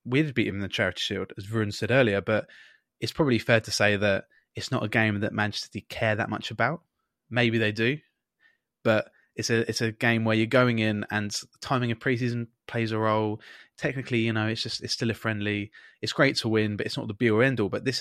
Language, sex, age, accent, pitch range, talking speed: English, male, 20-39, British, 105-120 Hz, 245 wpm